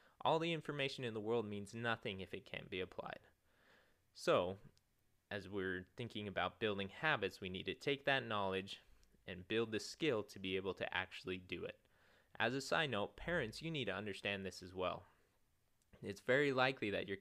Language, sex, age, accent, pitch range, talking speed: English, male, 20-39, American, 95-120 Hz, 190 wpm